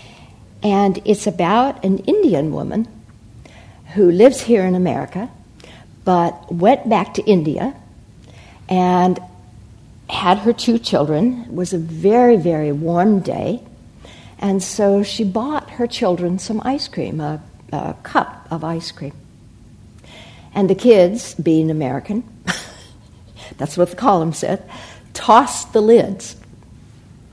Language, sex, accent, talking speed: English, female, American, 125 wpm